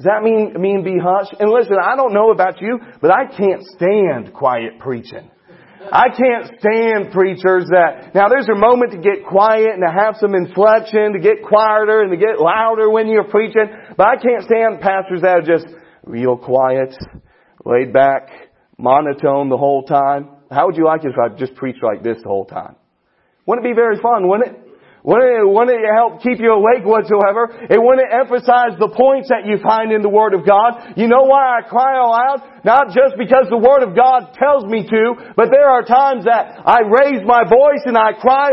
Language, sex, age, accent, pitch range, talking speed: English, male, 40-59, American, 200-265 Hz, 205 wpm